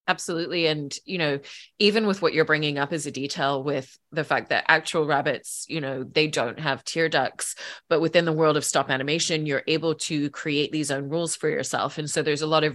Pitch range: 140-160 Hz